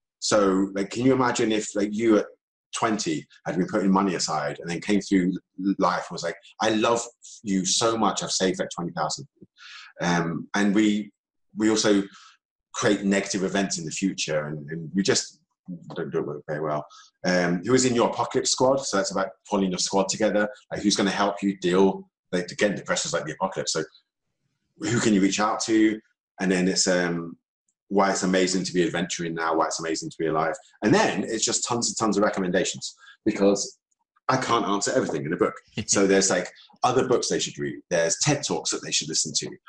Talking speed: 205 wpm